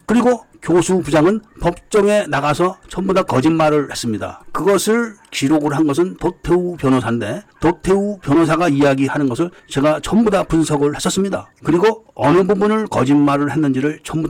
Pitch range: 135-185 Hz